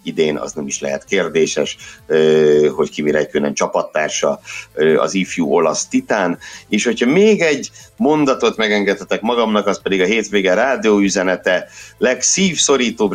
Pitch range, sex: 85-105 Hz, male